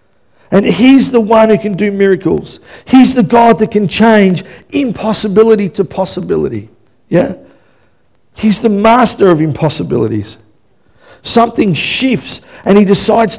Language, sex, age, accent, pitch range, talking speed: English, male, 50-69, Australian, 155-215 Hz, 125 wpm